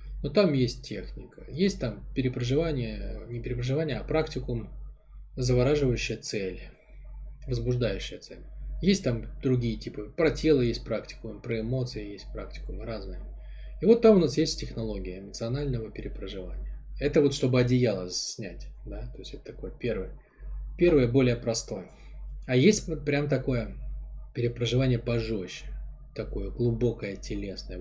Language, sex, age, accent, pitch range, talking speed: Russian, male, 20-39, native, 110-130 Hz, 130 wpm